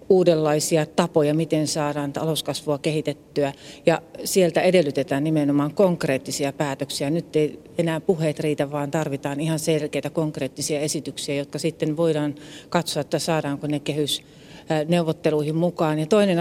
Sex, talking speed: female, 125 wpm